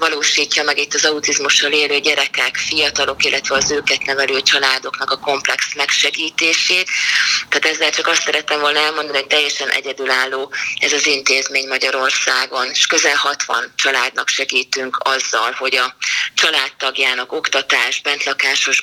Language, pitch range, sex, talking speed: Hungarian, 140-170 Hz, female, 130 wpm